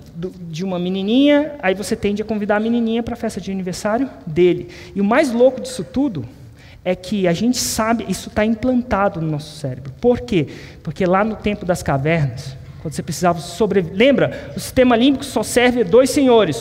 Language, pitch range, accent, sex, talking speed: Portuguese, 205-315 Hz, Brazilian, male, 190 wpm